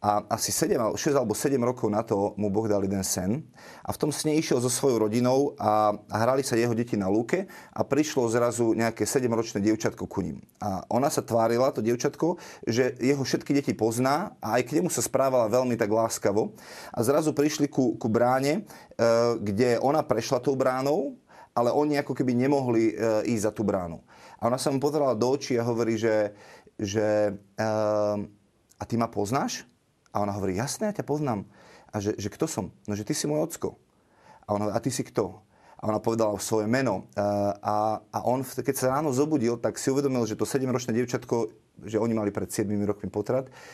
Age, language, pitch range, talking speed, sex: 30-49, Slovak, 110-135 Hz, 195 wpm, male